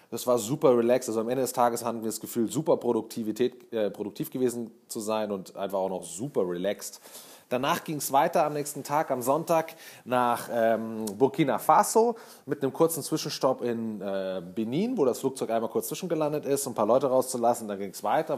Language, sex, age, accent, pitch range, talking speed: German, male, 30-49, German, 115-145 Hz, 205 wpm